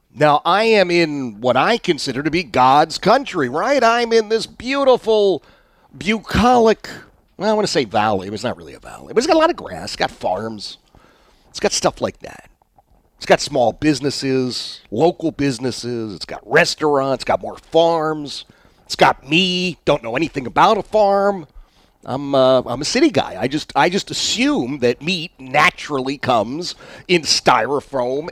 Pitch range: 135-205 Hz